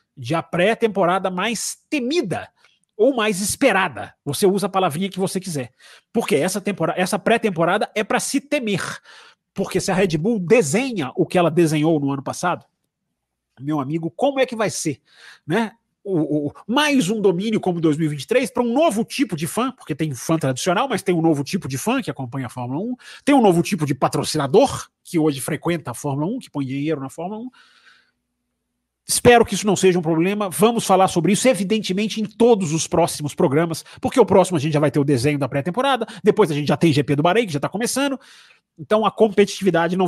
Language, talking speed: Portuguese, 200 wpm